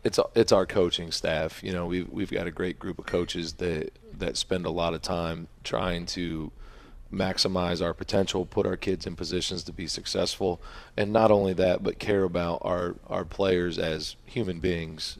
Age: 40-59